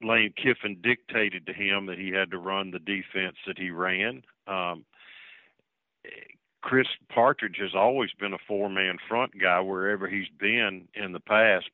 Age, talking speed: 50-69, 165 wpm